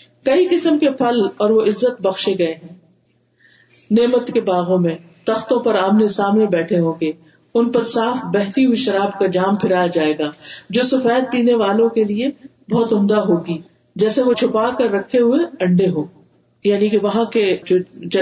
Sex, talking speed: female, 180 wpm